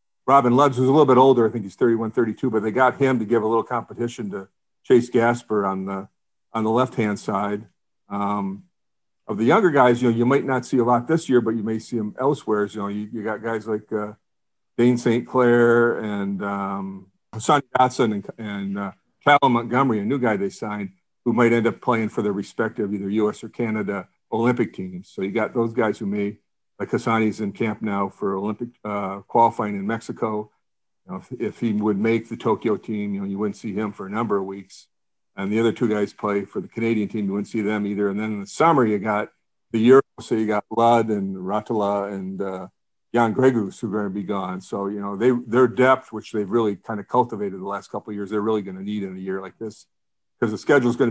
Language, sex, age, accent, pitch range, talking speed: English, male, 50-69, American, 100-120 Hz, 240 wpm